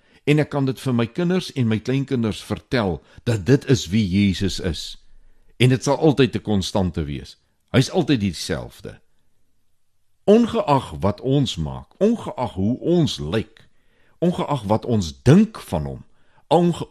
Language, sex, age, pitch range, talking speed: Swedish, male, 60-79, 90-135 Hz, 155 wpm